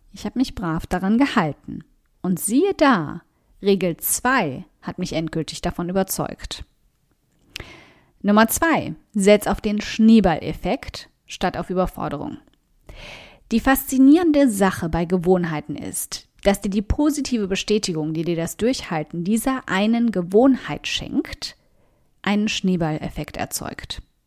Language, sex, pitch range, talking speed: German, female, 175-230 Hz, 115 wpm